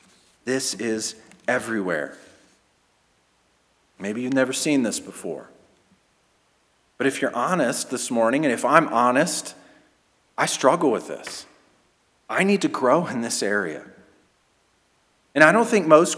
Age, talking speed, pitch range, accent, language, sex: 40-59, 130 wpm, 135-180 Hz, American, English, male